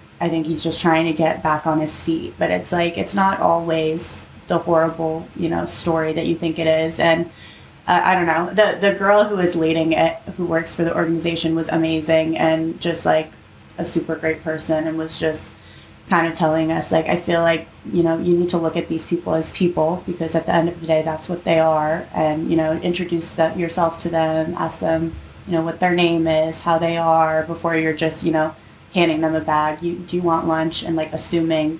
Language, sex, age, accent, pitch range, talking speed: English, female, 20-39, American, 160-175 Hz, 230 wpm